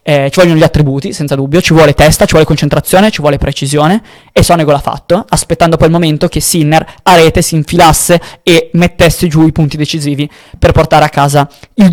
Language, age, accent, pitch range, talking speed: Italian, 20-39, native, 150-175 Hz, 205 wpm